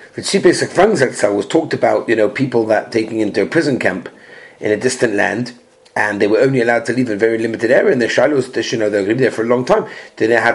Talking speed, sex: 290 wpm, male